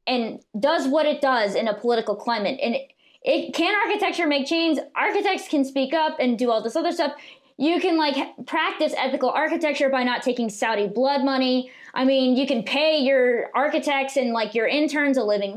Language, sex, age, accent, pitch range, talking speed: English, female, 20-39, American, 230-290 Hz, 195 wpm